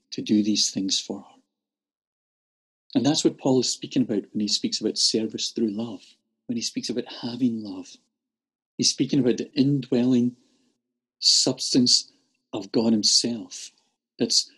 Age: 50-69